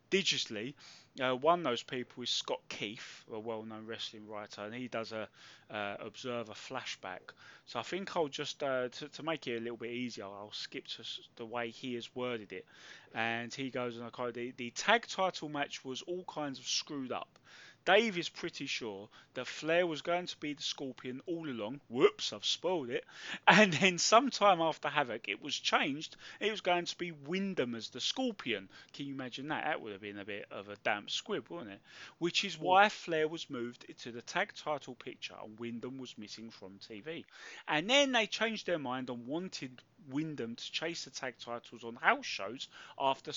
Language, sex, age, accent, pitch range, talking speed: English, male, 20-39, British, 120-170 Hz, 200 wpm